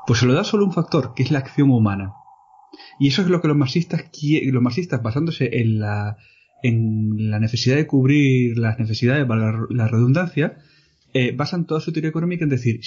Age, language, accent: 30-49, Spanish, Spanish